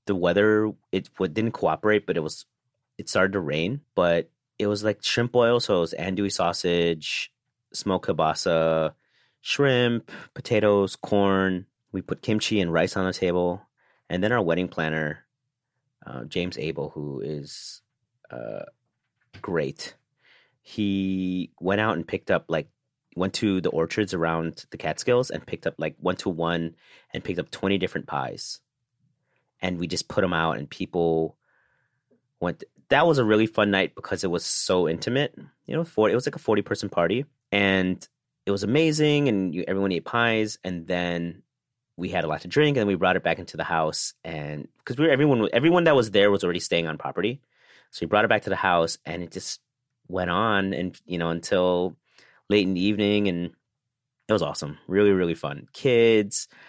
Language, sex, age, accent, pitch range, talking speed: English, male, 30-49, American, 85-110 Hz, 180 wpm